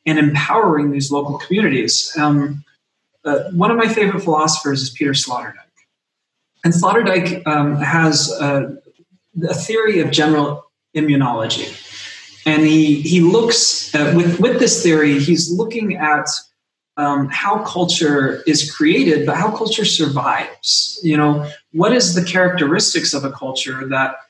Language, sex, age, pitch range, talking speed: English, male, 20-39, 145-180 Hz, 140 wpm